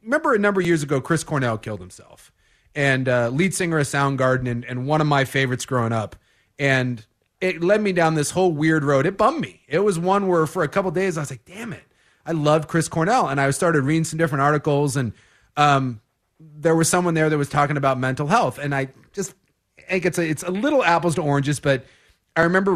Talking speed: 230 wpm